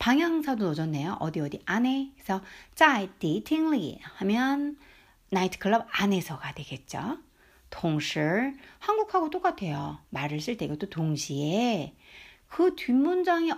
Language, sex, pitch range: Korean, female, 165-275 Hz